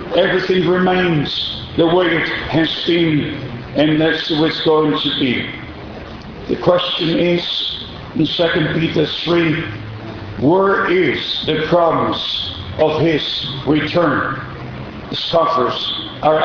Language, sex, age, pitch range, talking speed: English, male, 50-69, 150-180 Hz, 115 wpm